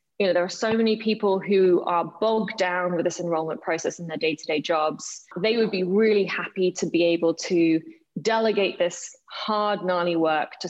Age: 20-39